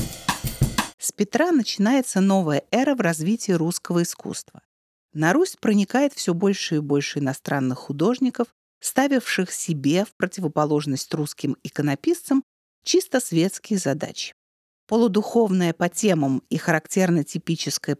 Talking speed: 105 wpm